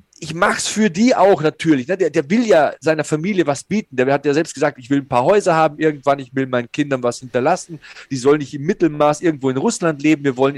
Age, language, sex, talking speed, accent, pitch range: 40-59, German, male, 255 wpm, German, 140-190 Hz